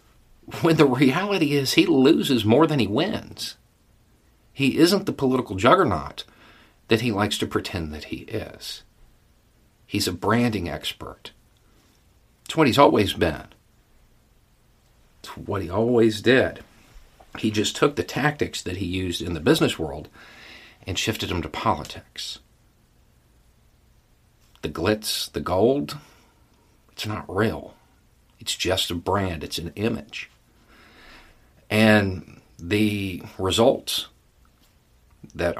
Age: 50-69